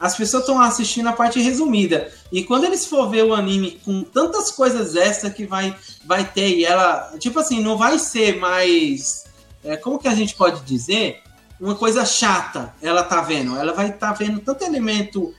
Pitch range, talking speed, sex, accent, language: 205-260 Hz, 195 wpm, male, Brazilian, Portuguese